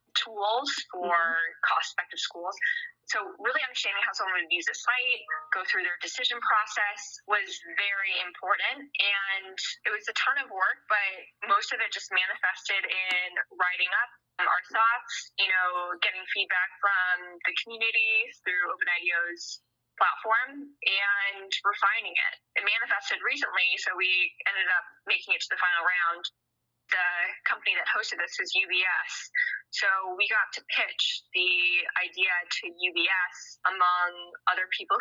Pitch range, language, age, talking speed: 175-230 Hz, English, 10-29, 145 wpm